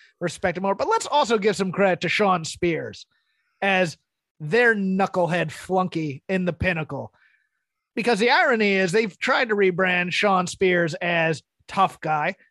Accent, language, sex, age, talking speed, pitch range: American, English, male, 30-49, 155 wpm, 180-225 Hz